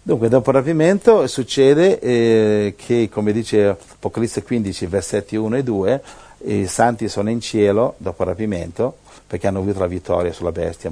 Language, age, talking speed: Italian, 50-69, 165 wpm